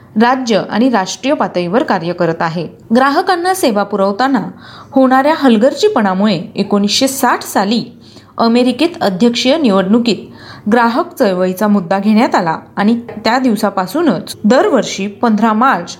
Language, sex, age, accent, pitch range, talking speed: Marathi, female, 30-49, native, 205-275 Hz, 105 wpm